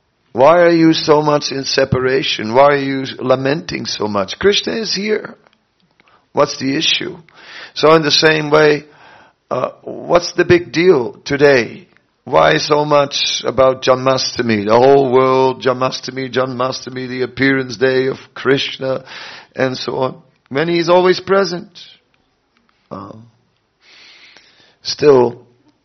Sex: male